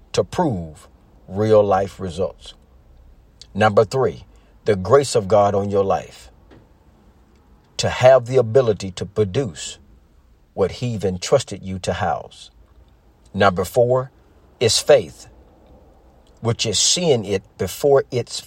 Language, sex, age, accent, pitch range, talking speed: English, male, 50-69, American, 75-120 Hz, 115 wpm